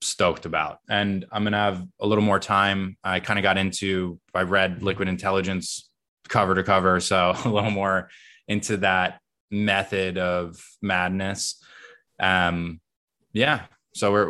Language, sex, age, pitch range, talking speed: English, male, 20-39, 90-100 Hz, 145 wpm